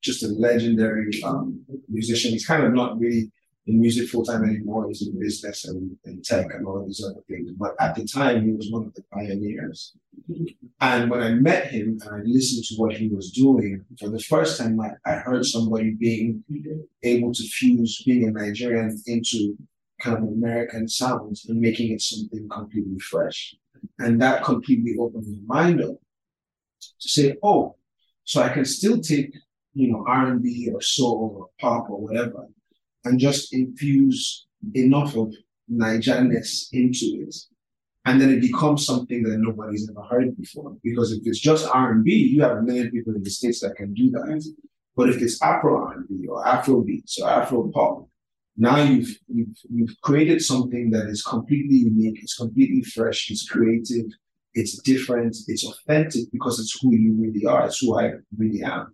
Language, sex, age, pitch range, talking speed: English, male, 30-49, 110-130 Hz, 175 wpm